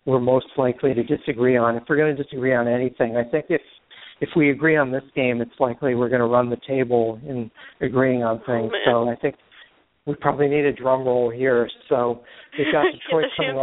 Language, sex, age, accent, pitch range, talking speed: English, male, 60-79, American, 125-140 Hz, 215 wpm